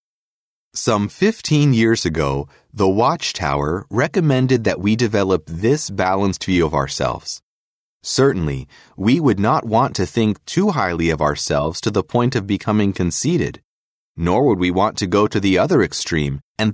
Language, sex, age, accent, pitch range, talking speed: English, male, 30-49, American, 90-125 Hz, 155 wpm